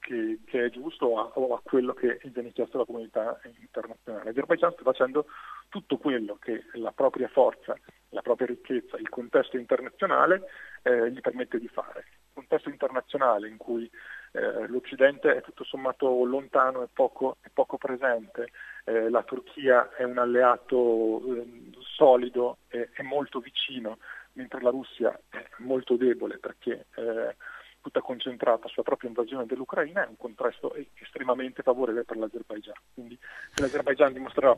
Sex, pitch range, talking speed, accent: male, 115-145 Hz, 150 wpm, native